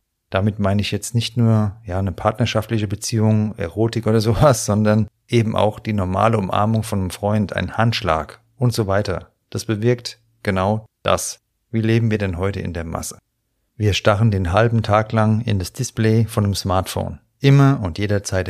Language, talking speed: German, 175 wpm